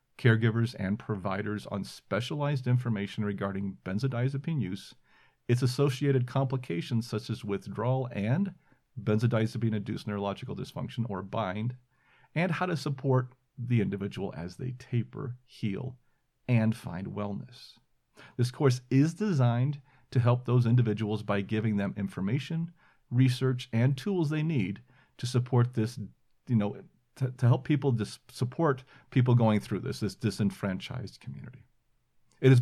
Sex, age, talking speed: male, 40-59, 130 wpm